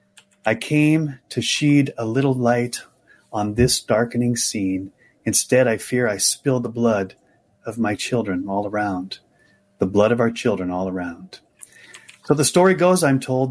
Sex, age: male, 30-49